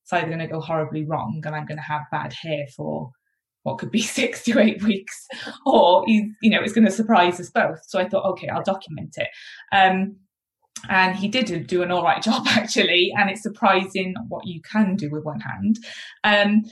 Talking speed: 210 wpm